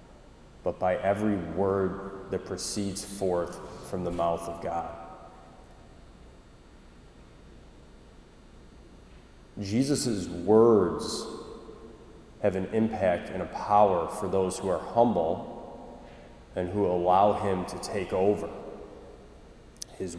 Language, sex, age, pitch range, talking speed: English, male, 30-49, 90-105 Hz, 100 wpm